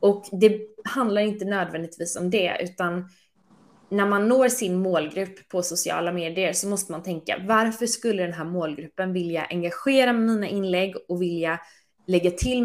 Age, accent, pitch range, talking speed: 20-39, native, 170-215 Hz, 155 wpm